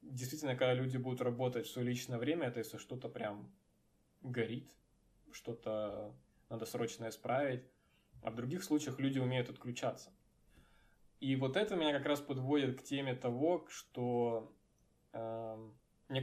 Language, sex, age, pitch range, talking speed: Russian, male, 20-39, 120-140 Hz, 135 wpm